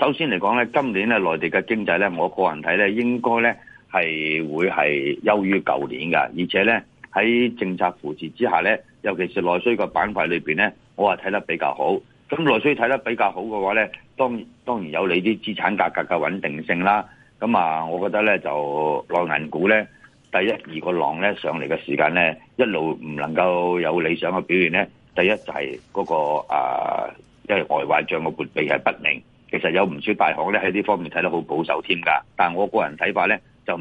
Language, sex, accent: Chinese, male, native